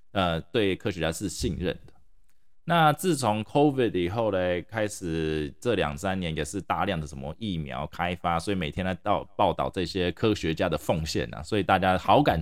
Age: 20-39